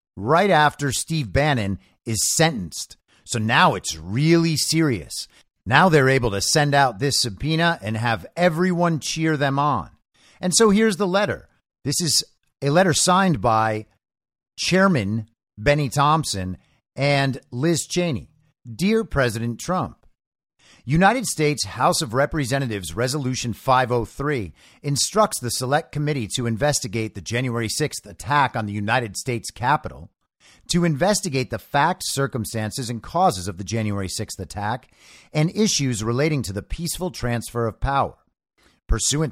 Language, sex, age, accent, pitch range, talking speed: English, male, 50-69, American, 115-160 Hz, 135 wpm